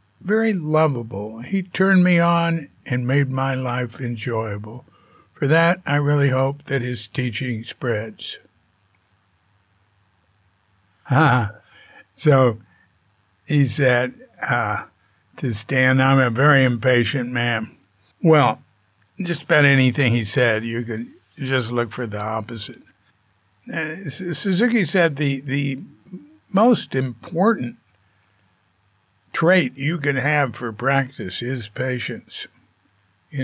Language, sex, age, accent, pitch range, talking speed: English, male, 60-79, American, 115-145 Hz, 110 wpm